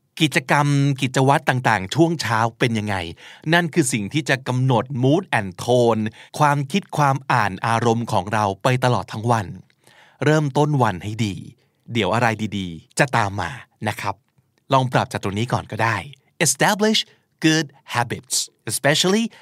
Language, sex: Thai, male